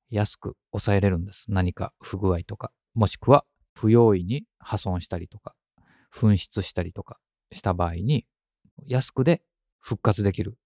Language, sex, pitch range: Japanese, male, 90-120 Hz